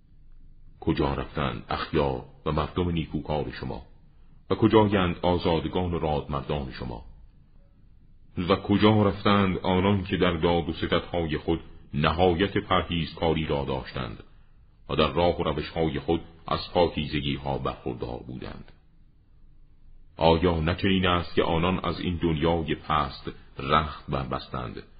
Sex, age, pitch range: male, 40-59, 75-90 Hz